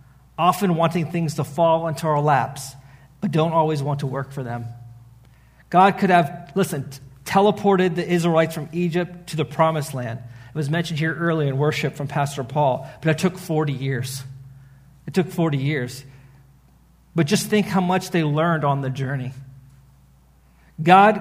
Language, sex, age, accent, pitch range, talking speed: English, male, 40-59, American, 135-175 Hz, 165 wpm